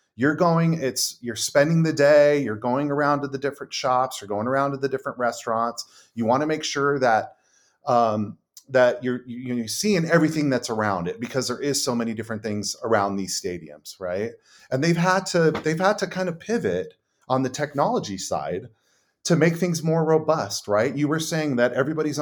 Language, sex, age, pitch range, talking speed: English, male, 30-49, 125-160 Hz, 195 wpm